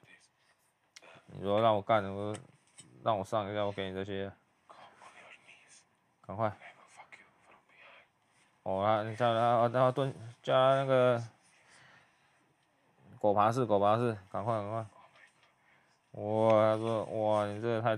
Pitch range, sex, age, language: 105-120 Hz, male, 20-39, Chinese